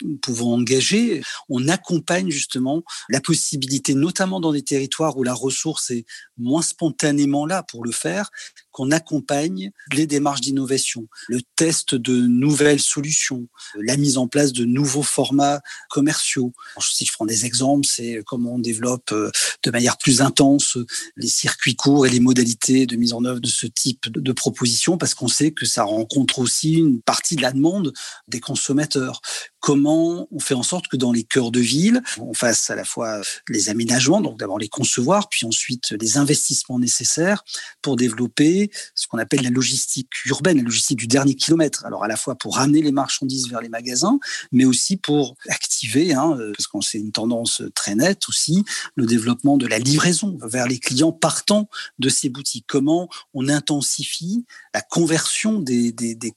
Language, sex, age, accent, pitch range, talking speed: French, male, 40-59, French, 120-150 Hz, 175 wpm